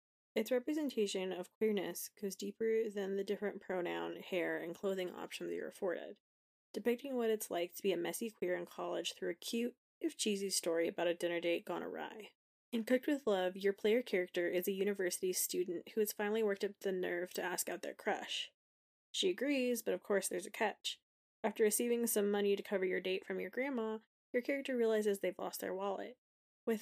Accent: American